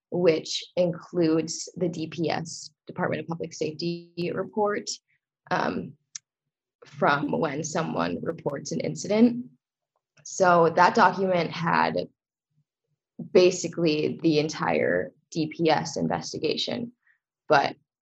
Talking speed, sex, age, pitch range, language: 85 wpm, female, 20-39, 155-180 Hz, English